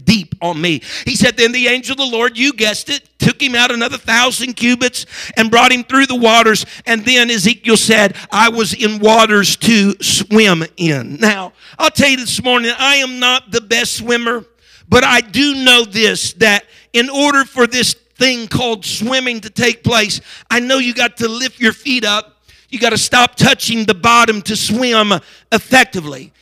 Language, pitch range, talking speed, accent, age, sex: English, 220-260 Hz, 190 wpm, American, 50-69, male